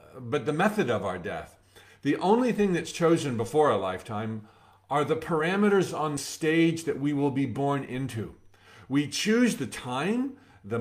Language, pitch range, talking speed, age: English, 125-185 Hz, 165 wpm, 50-69